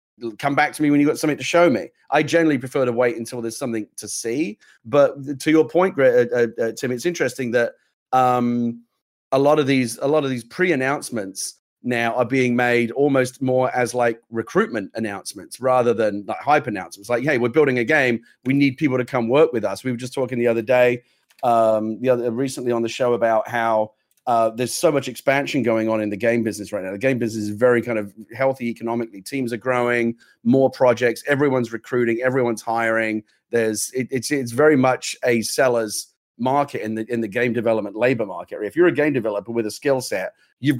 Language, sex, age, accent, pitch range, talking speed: English, male, 30-49, British, 115-130 Hz, 215 wpm